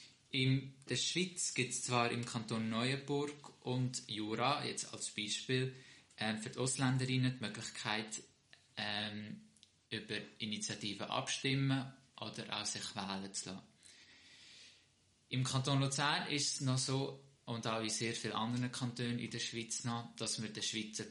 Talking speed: 140 wpm